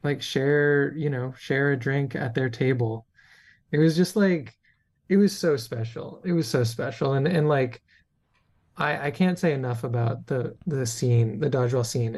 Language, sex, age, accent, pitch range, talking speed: English, male, 20-39, American, 120-145 Hz, 180 wpm